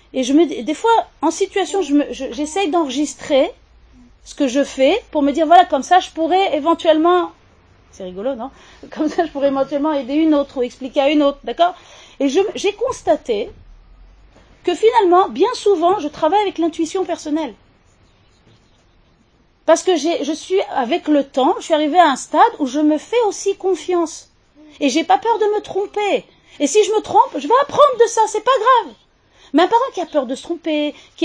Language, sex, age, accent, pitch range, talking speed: French, female, 40-59, French, 265-355 Hz, 205 wpm